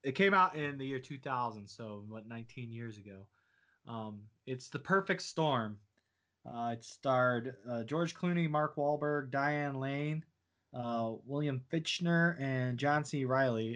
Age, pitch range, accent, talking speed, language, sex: 20-39, 115-140 Hz, American, 150 wpm, English, male